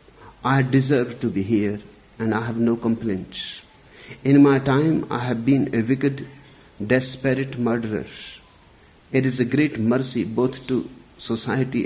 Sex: male